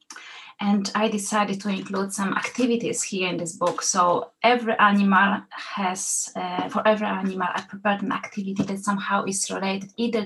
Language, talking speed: English, 165 wpm